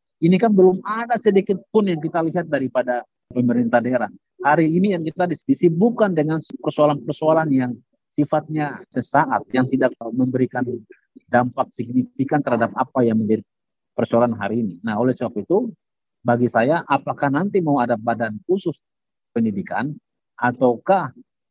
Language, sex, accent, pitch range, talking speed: Indonesian, male, native, 120-170 Hz, 130 wpm